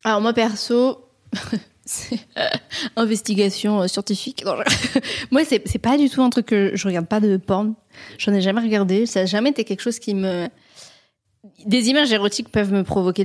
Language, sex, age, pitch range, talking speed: French, female, 20-39, 195-235 Hz, 170 wpm